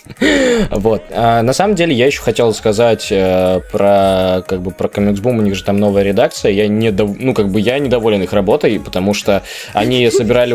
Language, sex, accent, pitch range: Russian, male, native, 120-155 Hz